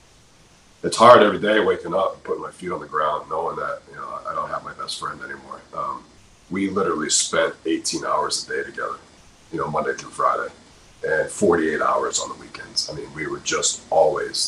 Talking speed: 205 wpm